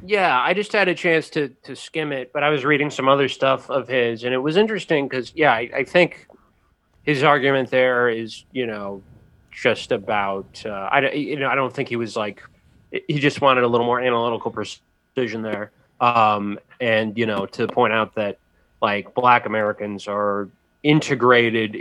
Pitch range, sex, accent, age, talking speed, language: 110-135 Hz, male, American, 30-49, 185 wpm, English